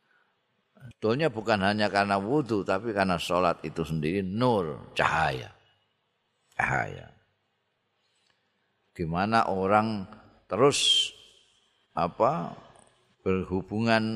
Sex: male